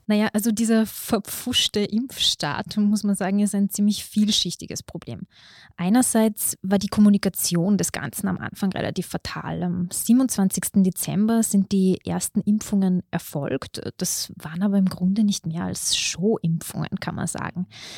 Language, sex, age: German, female, 20-39